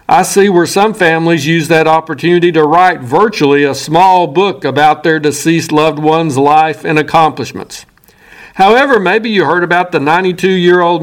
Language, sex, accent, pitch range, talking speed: English, male, American, 150-190 Hz, 160 wpm